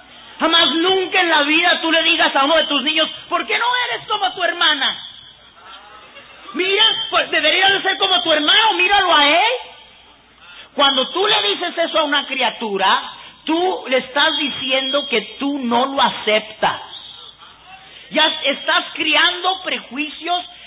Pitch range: 255-340 Hz